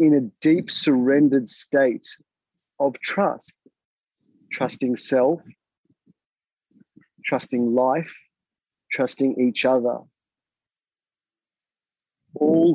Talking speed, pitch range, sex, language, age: 70 wpm, 130-155 Hz, male, English, 40-59